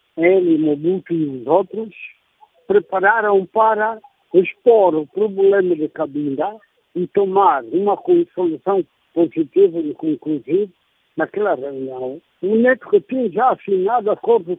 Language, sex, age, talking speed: English, male, 60-79, 115 wpm